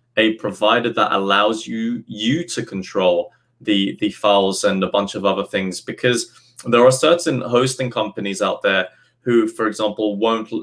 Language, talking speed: English, 165 wpm